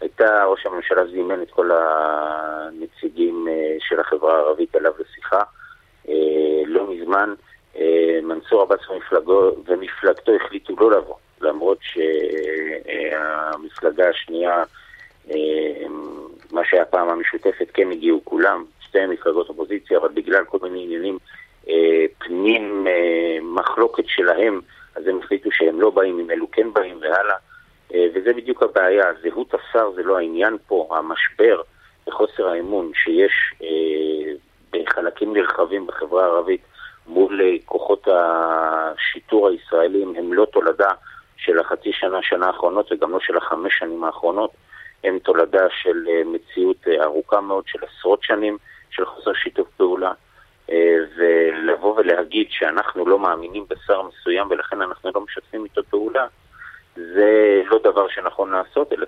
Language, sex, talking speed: Hebrew, male, 120 wpm